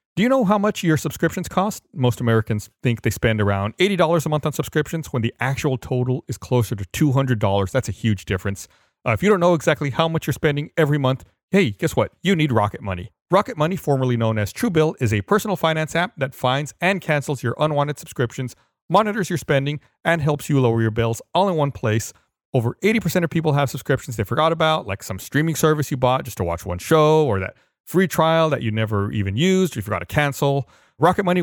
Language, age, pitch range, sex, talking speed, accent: English, 40-59, 115-160 Hz, male, 220 wpm, American